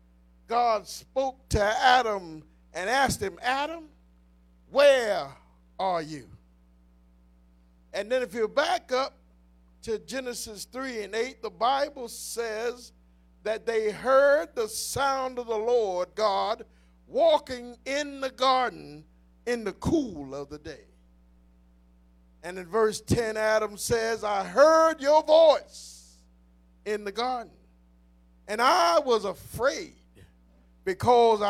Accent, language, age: American, English, 50-69